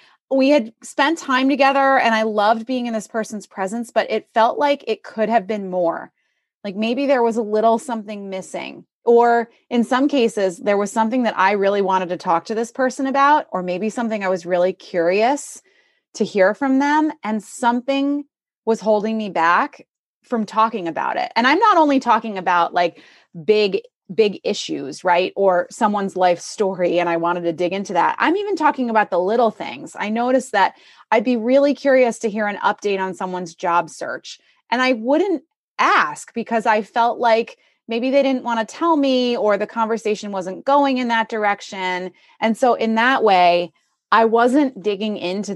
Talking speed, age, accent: 190 wpm, 20-39, American